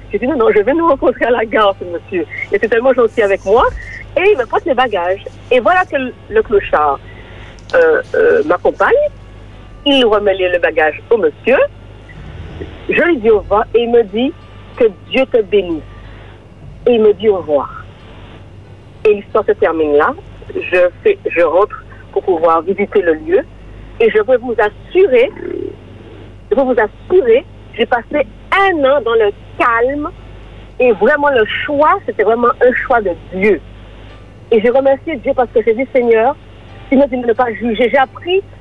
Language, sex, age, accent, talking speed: French, female, 50-69, French, 180 wpm